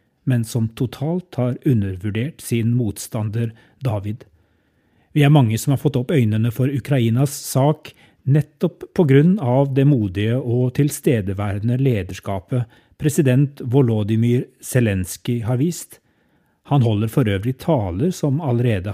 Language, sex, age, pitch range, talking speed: English, male, 30-49, 110-140 Hz, 125 wpm